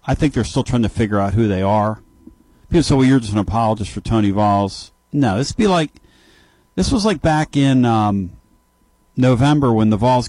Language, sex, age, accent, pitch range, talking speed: English, male, 50-69, American, 105-135 Hz, 205 wpm